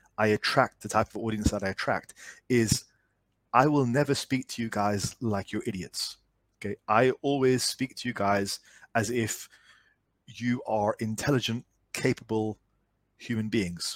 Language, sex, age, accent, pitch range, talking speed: English, male, 30-49, British, 110-130 Hz, 150 wpm